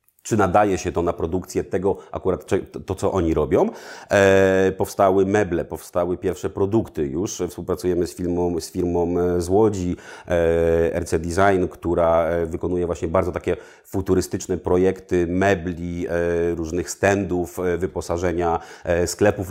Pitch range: 85-95 Hz